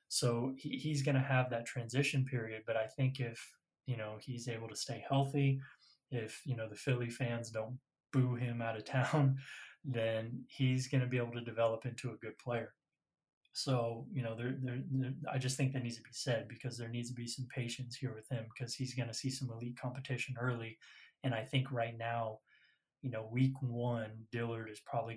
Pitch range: 115-130 Hz